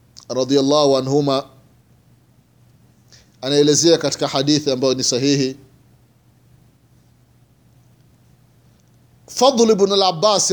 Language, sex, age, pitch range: Swahili, male, 30-49, 155-250 Hz